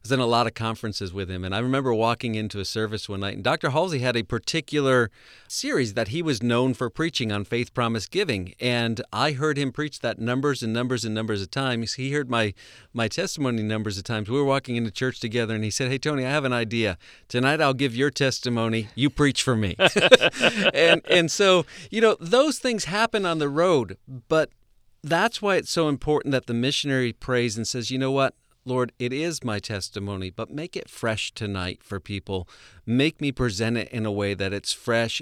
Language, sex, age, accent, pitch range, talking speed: English, male, 40-59, American, 105-135 Hz, 215 wpm